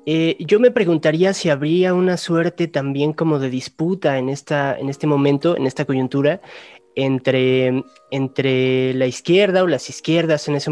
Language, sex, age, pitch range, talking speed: Spanish, male, 20-39, 130-165 Hz, 160 wpm